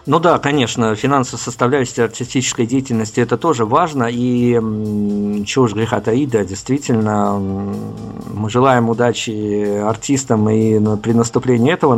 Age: 50-69